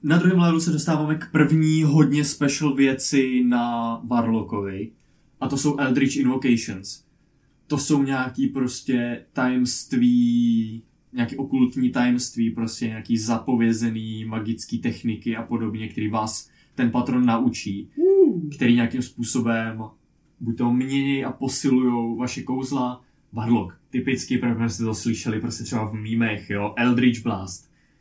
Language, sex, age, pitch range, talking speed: Czech, male, 20-39, 110-130 Hz, 130 wpm